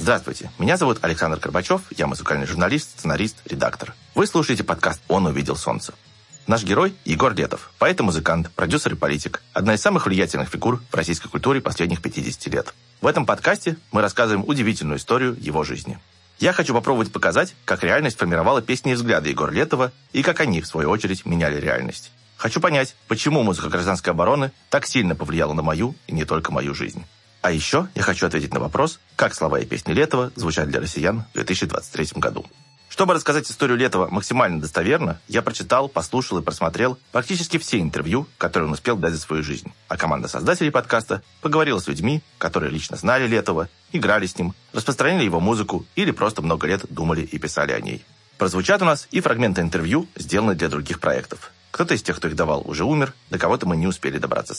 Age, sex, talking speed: 30-49, male, 190 wpm